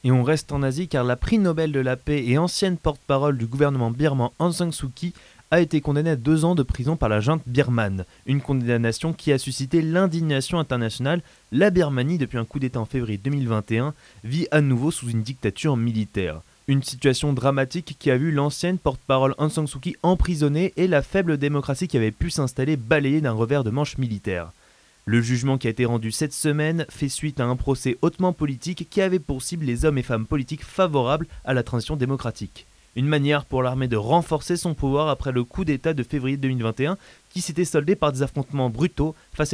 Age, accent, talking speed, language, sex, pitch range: 20-39, French, 205 wpm, French, male, 125-155 Hz